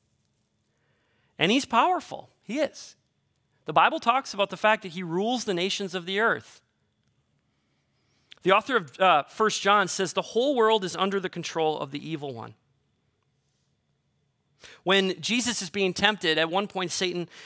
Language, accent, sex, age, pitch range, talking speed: English, American, male, 30-49, 170-220 Hz, 160 wpm